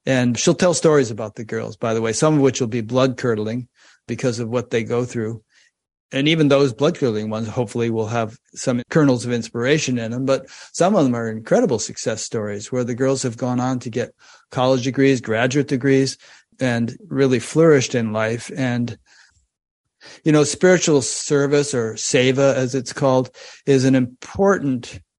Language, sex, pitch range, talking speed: English, male, 115-135 Hz, 180 wpm